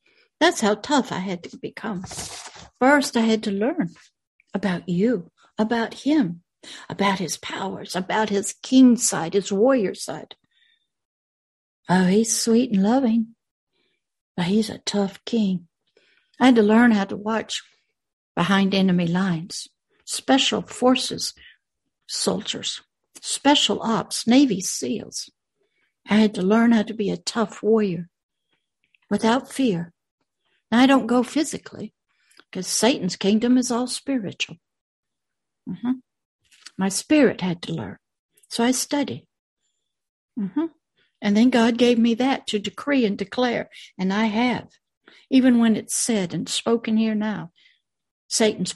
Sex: female